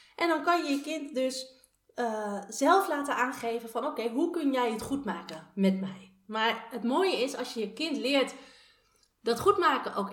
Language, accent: Dutch, Dutch